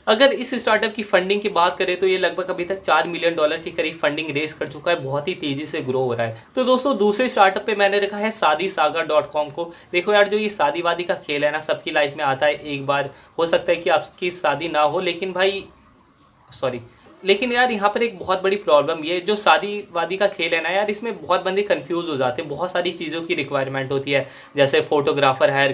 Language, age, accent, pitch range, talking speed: Hindi, 20-39, native, 140-190 Hz, 240 wpm